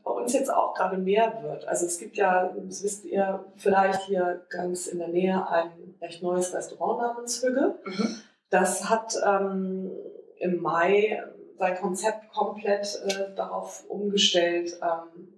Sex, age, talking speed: female, 20-39, 150 wpm